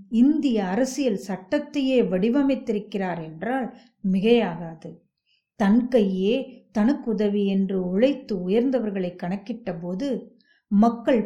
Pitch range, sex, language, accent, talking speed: 185-250 Hz, female, Tamil, native, 75 wpm